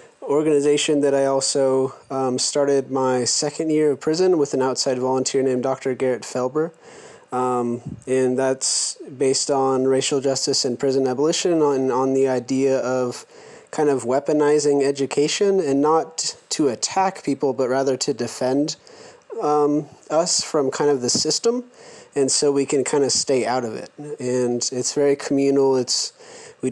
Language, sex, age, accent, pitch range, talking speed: English, male, 20-39, American, 130-145 Hz, 155 wpm